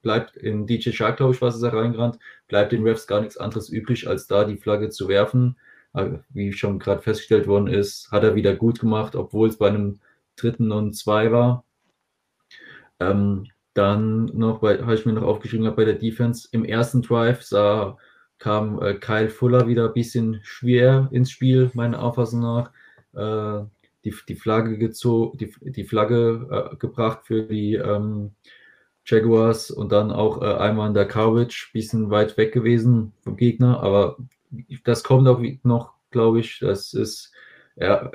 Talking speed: 165 wpm